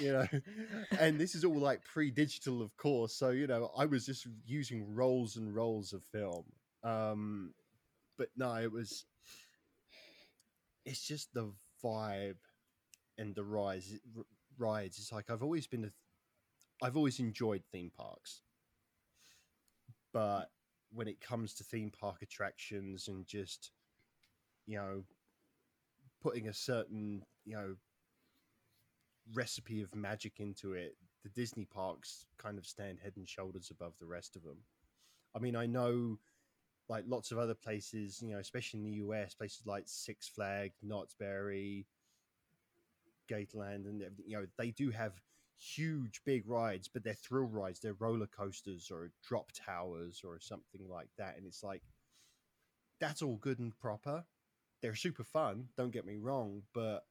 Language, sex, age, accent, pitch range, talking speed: English, male, 10-29, British, 100-125 Hz, 150 wpm